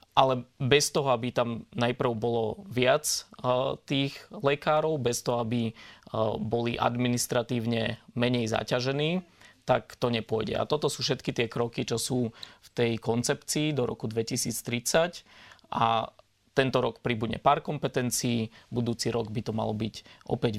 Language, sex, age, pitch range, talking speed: Slovak, male, 20-39, 115-125 Hz, 135 wpm